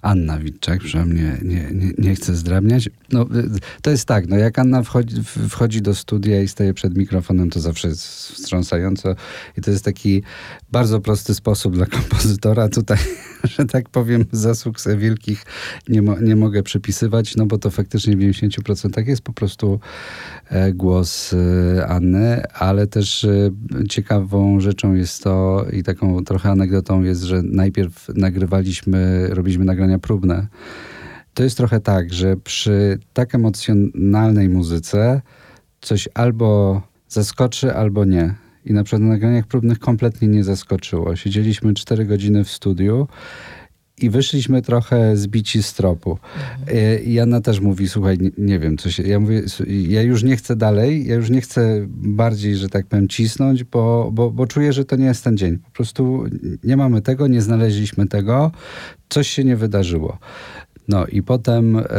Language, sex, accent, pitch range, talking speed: Polish, male, native, 95-115 Hz, 155 wpm